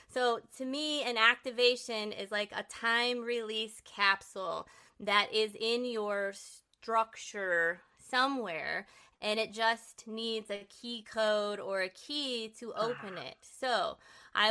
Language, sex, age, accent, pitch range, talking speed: English, female, 20-39, American, 195-230 Hz, 130 wpm